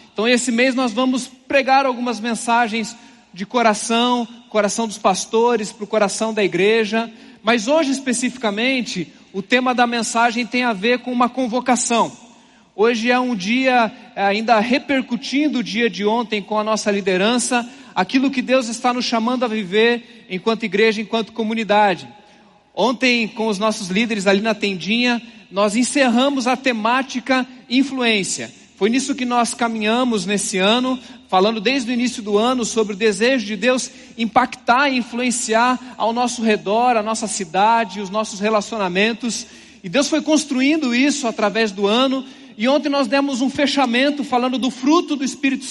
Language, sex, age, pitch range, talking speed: Portuguese, male, 40-59, 220-255 Hz, 155 wpm